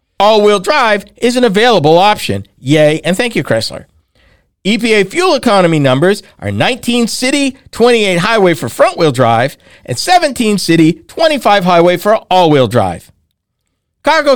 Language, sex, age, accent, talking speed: English, male, 50-69, American, 135 wpm